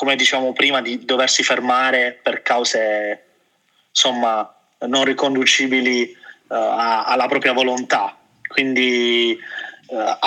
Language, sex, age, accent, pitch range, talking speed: Italian, male, 20-39, native, 130-160 Hz, 100 wpm